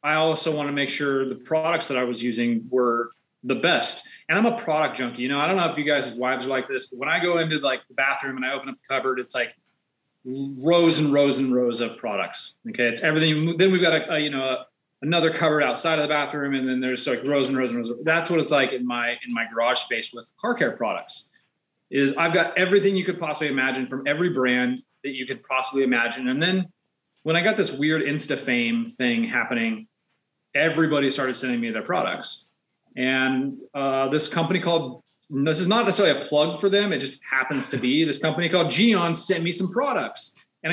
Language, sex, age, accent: English, male, 30-49, American